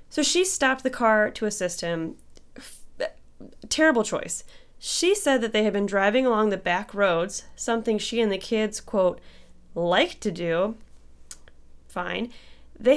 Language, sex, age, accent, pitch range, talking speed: English, female, 10-29, American, 180-240 Hz, 150 wpm